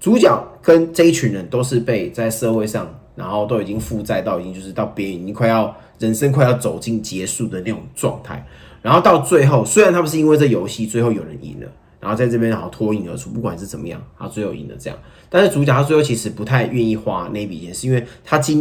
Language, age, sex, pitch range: Chinese, 20-39, male, 110-150 Hz